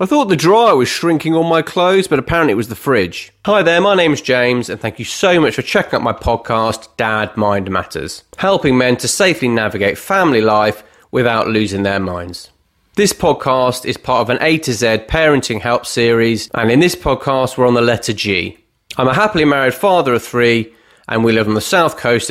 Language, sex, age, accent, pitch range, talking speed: English, male, 30-49, British, 110-140 Hz, 215 wpm